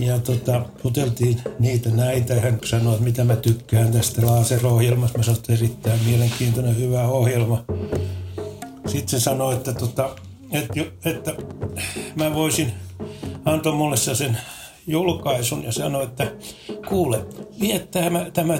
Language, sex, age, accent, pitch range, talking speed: Finnish, male, 60-79, native, 115-135 Hz, 125 wpm